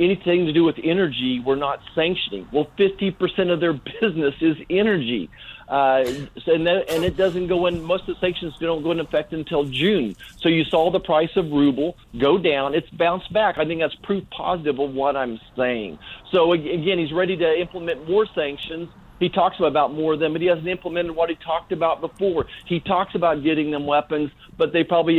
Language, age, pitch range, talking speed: English, 50-69, 145-180 Hz, 205 wpm